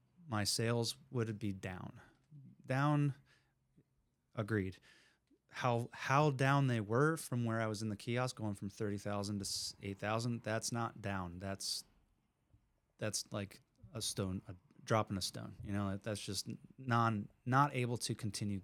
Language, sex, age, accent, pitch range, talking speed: English, male, 30-49, American, 105-130 Hz, 150 wpm